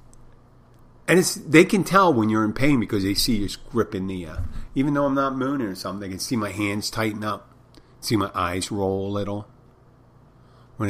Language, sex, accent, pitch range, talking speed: English, male, American, 100-125 Hz, 205 wpm